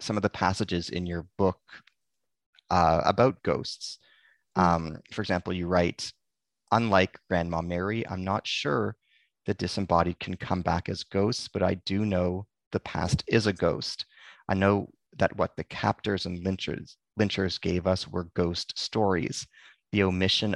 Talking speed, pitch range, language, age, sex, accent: 155 wpm, 90-105 Hz, English, 30-49, male, American